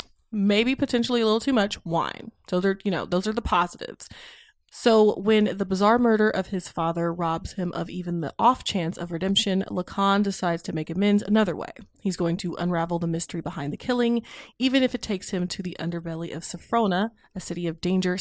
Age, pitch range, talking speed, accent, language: 20-39, 170-220 Hz, 210 wpm, American, English